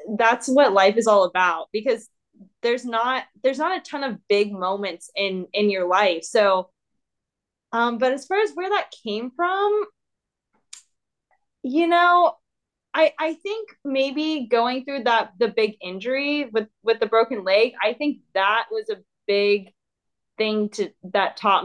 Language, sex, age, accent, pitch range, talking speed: English, female, 20-39, American, 180-240 Hz, 160 wpm